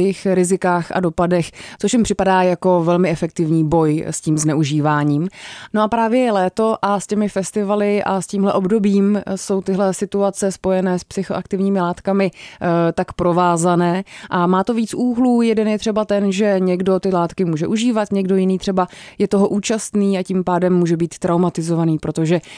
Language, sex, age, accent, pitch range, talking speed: Czech, female, 20-39, native, 180-205 Hz, 170 wpm